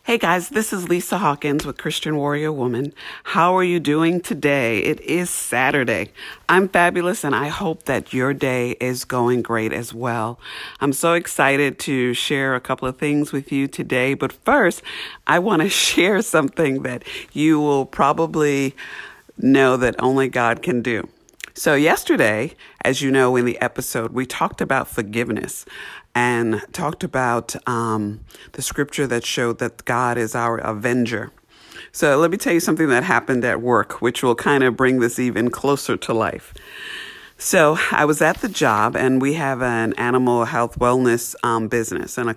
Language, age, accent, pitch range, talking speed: English, 50-69, American, 120-145 Hz, 175 wpm